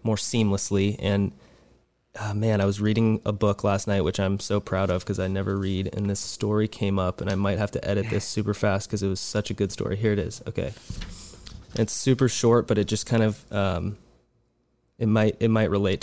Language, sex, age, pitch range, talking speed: English, male, 20-39, 100-115 Hz, 225 wpm